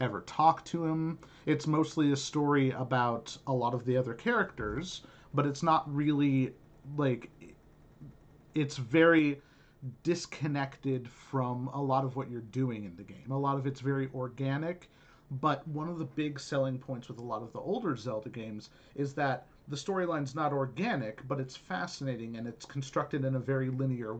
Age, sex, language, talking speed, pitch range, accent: 40-59, male, English, 175 wpm, 130-155 Hz, American